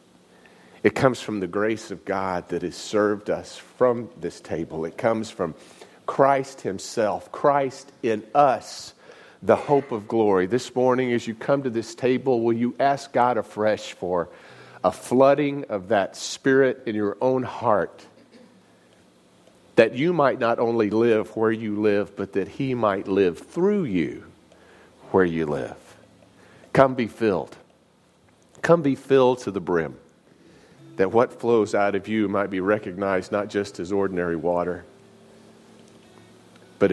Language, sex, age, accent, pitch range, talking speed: English, male, 40-59, American, 95-120 Hz, 150 wpm